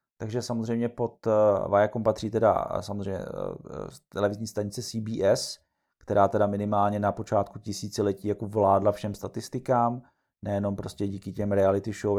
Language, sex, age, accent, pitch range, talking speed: Czech, male, 30-49, native, 100-110 Hz, 130 wpm